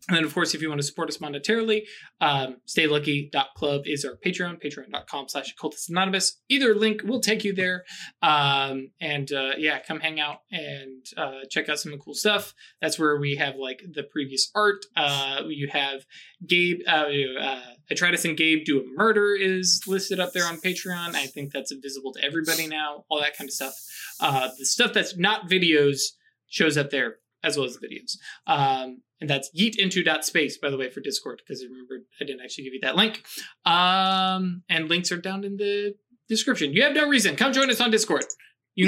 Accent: American